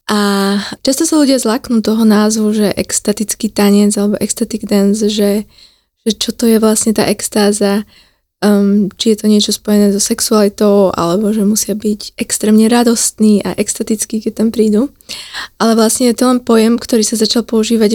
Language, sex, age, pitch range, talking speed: Slovak, female, 20-39, 210-230 Hz, 165 wpm